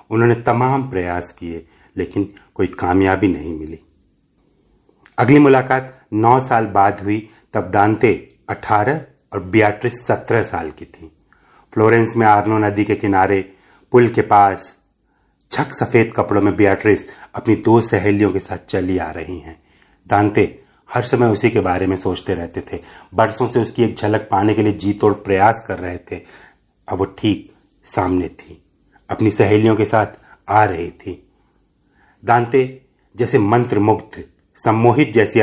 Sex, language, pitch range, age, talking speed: male, Hindi, 95-115 Hz, 40-59, 150 wpm